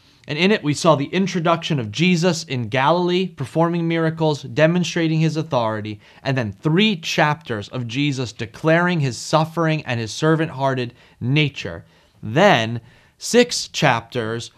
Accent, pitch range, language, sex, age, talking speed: American, 120-165 Hz, English, male, 30-49, 130 wpm